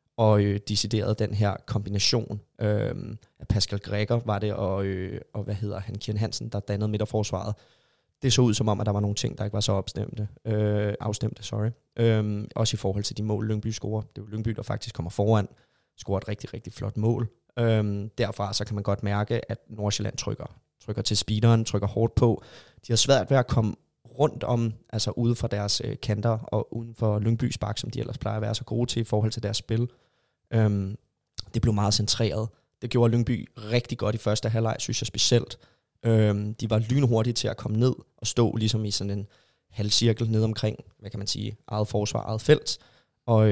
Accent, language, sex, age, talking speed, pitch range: native, Danish, male, 20-39, 210 wpm, 105-115 Hz